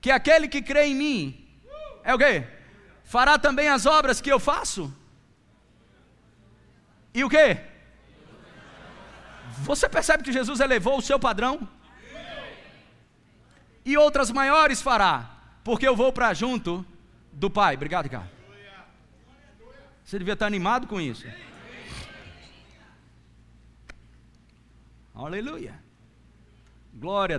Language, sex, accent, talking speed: Portuguese, male, Brazilian, 105 wpm